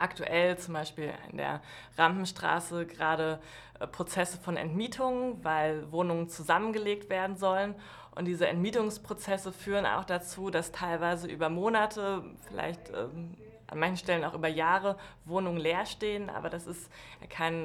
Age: 20-39